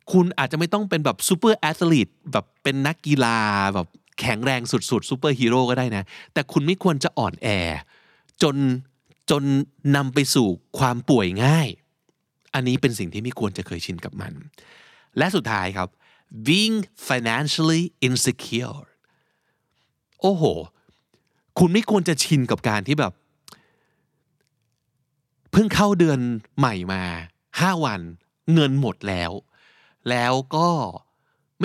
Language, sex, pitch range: Thai, male, 115-160 Hz